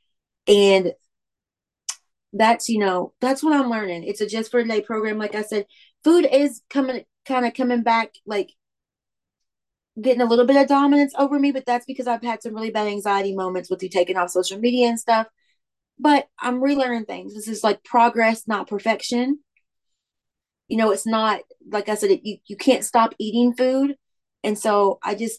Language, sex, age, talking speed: English, female, 30-49, 185 wpm